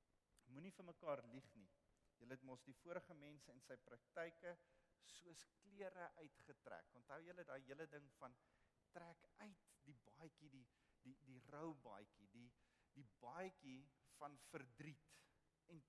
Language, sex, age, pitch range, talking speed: English, male, 50-69, 125-175 Hz, 140 wpm